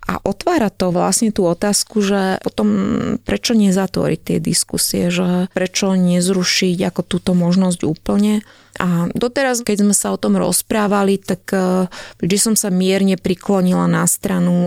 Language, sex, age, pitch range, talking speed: Slovak, female, 20-39, 170-195 Hz, 145 wpm